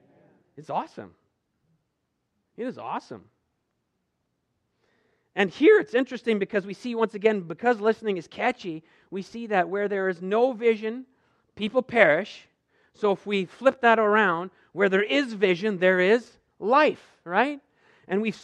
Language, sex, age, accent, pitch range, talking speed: English, male, 40-59, American, 180-240 Hz, 145 wpm